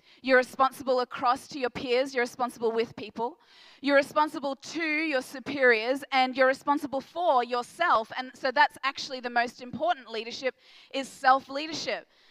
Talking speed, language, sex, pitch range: 145 wpm, English, female, 255-305 Hz